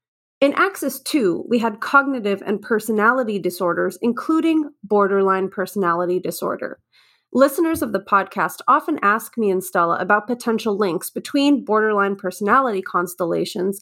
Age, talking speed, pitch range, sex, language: 30-49, 125 wpm, 195-265 Hz, female, English